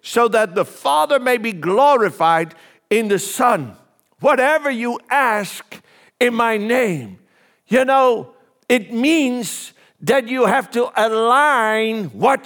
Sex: male